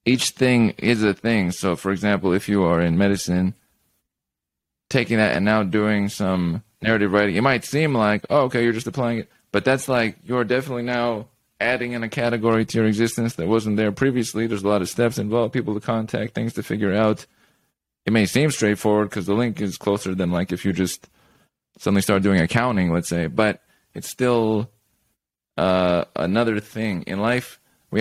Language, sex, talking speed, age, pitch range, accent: English, male, 195 wpm, 20-39, 85-110 Hz, American